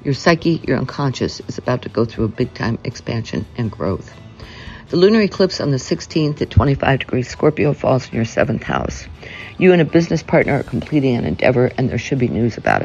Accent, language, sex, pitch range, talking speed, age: American, English, female, 115-140 Hz, 210 wpm, 60-79